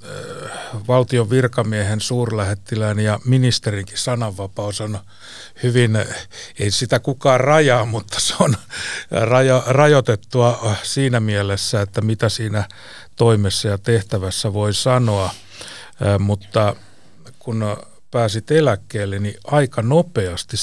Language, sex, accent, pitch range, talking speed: Finnish, male, native, 100-120 Hz, 95 wpm